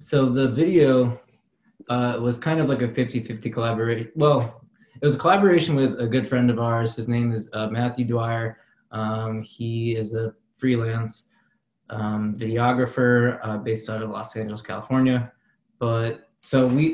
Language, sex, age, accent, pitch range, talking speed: English, male, 20-39, American, 115-140 Hz, 165 wpm